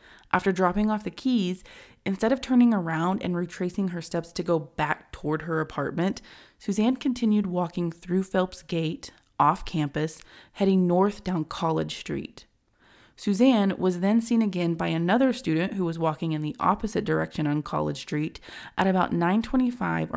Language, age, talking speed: English, 20-39, 160 wpm